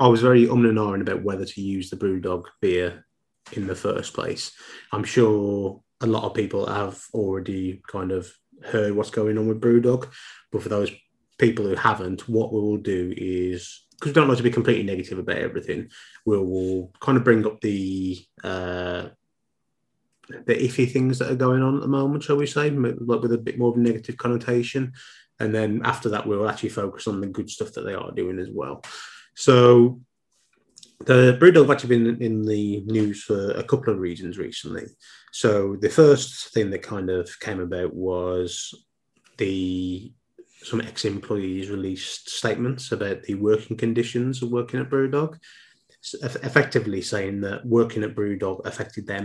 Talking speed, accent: 180 wpm, British